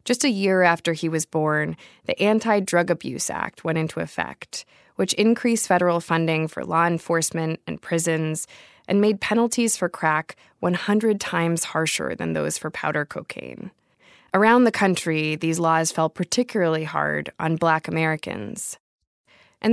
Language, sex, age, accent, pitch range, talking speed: English, female, 20-39, American, 160-210 Hz, 145 wpm